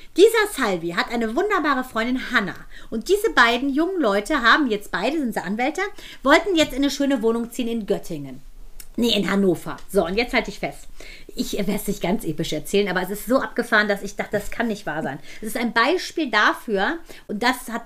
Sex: female